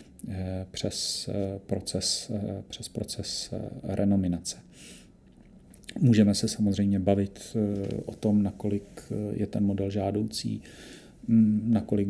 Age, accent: 40-59, native